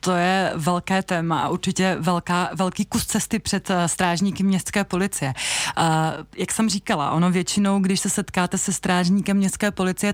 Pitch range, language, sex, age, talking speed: 180-200 Hz, Czech, female, 30-49, 155 wpm